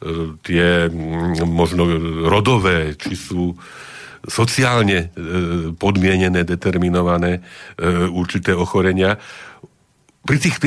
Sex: male